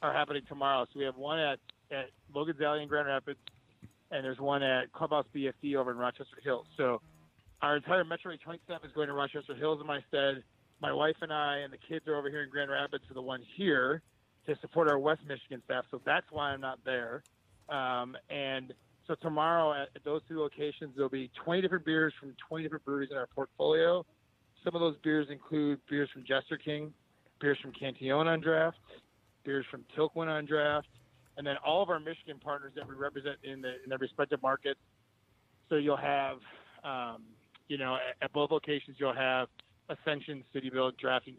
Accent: American